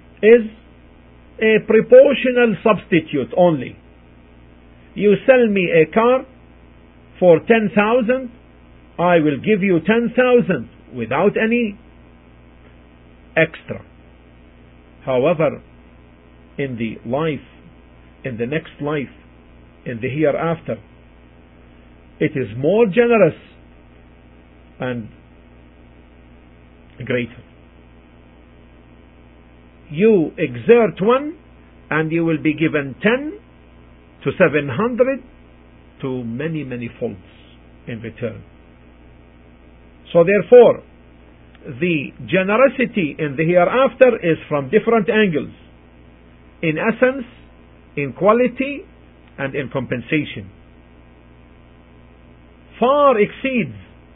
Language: English